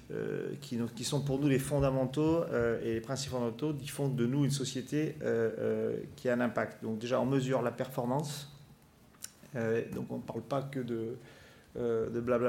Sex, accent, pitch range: male, French, 115-140 Hz